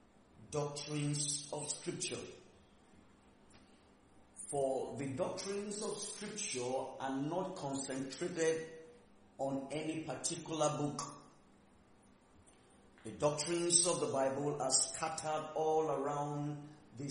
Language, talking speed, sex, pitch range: English, 90 wpm, male, 140-160 Hz